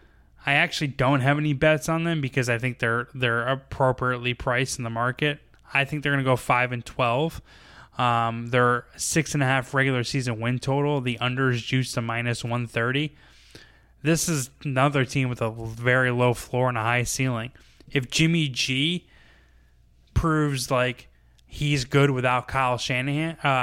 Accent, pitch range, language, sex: American, 120-140 Hz, English, male